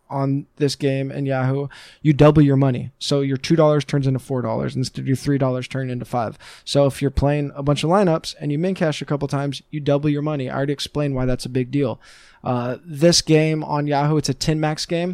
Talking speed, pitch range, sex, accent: 245 wpm, 130-150 Hz, male, American